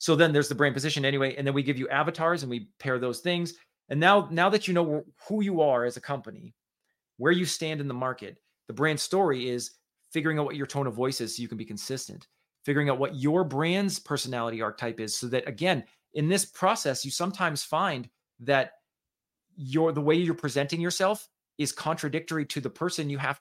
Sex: male